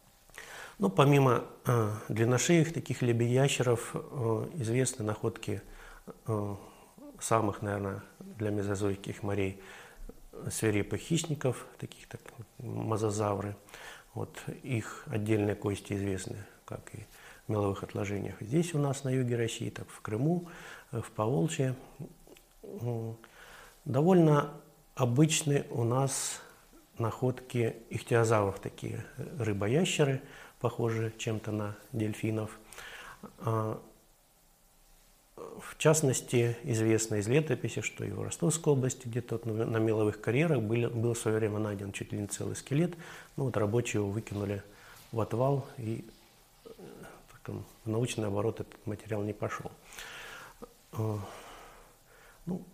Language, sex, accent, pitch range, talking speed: Russian, male, native, 105-130 Hz, 110 wpm